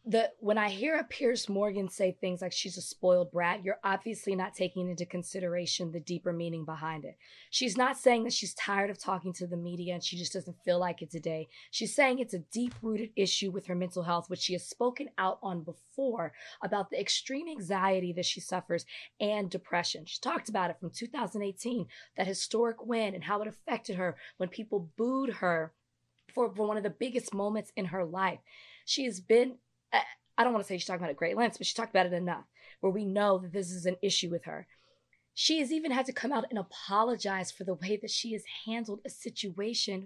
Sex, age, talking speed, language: female, 20-39, 220 wpm, English